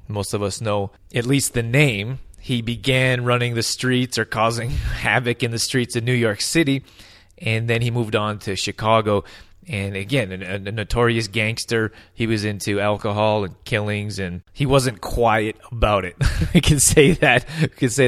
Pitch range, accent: 110-135 Hz, American